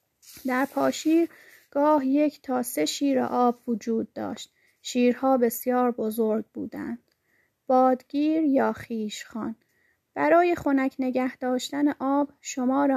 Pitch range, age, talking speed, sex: 230-275 Hz, 30-49, 105 wpm, female